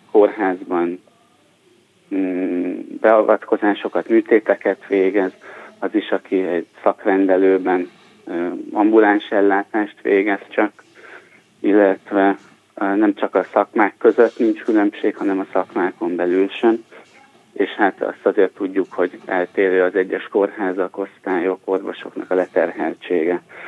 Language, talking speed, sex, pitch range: Hungarian, 100 wpm, male, 95-105 Hz